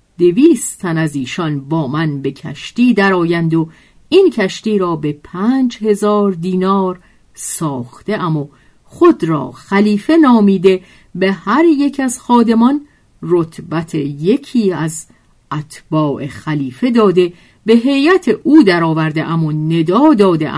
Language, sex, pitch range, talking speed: Persian, female, 155-230 Hz, 130 wpm